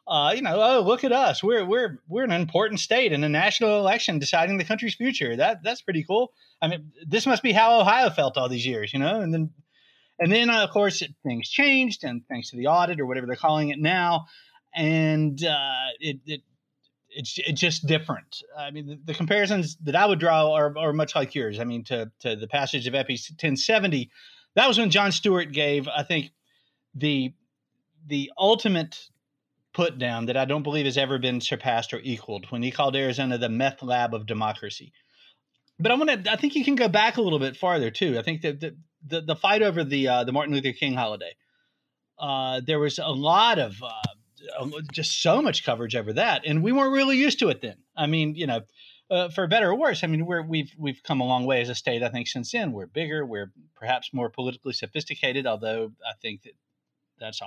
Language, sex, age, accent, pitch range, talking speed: English, male, 30-49, American, 130-180 Hz, 215 wpm